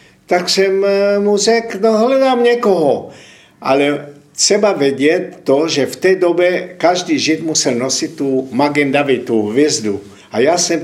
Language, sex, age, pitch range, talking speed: Slovak, male, 60-79, 145-205 Hz, 145 wpm